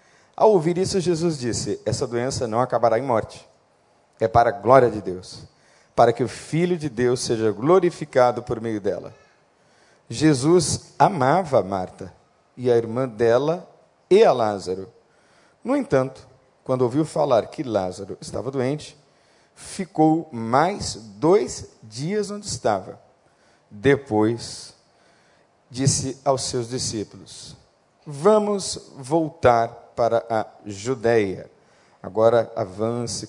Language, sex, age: Portuguese, male, 50-69